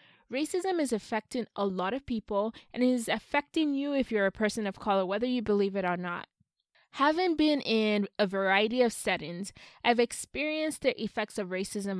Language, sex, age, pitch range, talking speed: English, female, 20-39, 195-255 Hz, 185 wpm